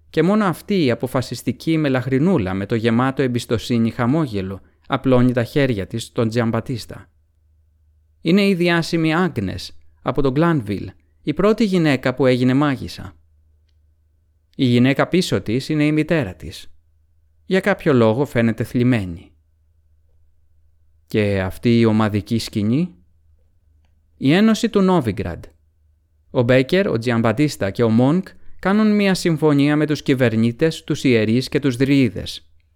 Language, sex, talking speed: Greek, male, 130 wpm